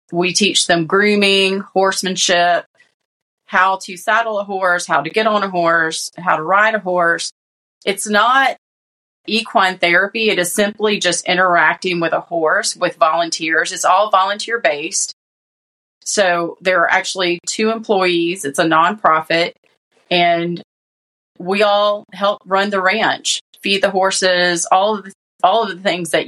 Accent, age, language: American, 30-49, English